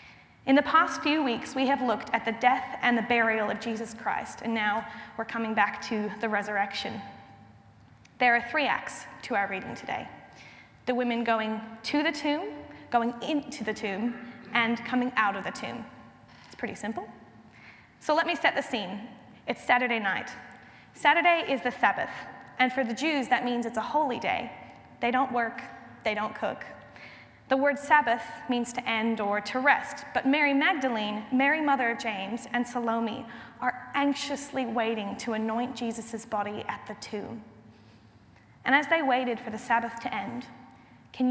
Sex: female